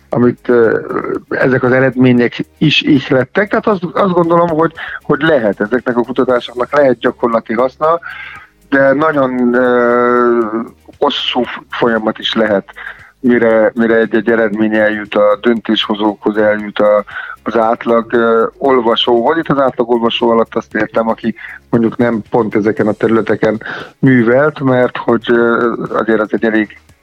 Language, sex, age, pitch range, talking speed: Hungarian, male, 30-49, 110-135 Hz, 145 wpm